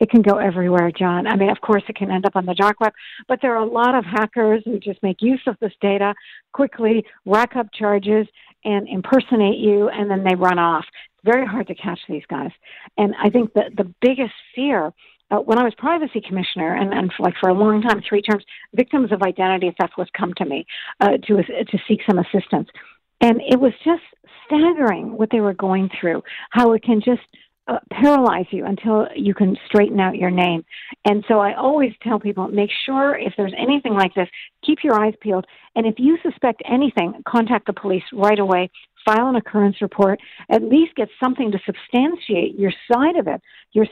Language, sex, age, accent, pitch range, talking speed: English, female, 60-79, American, 195-245 Hz, 210 wpm